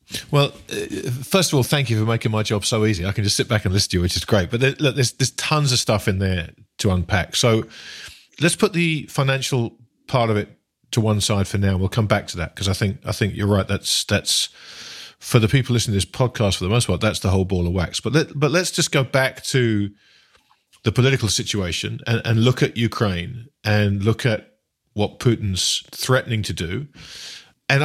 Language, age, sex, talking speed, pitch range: English, 40-59, male, 225 wpm, 100-125 Hz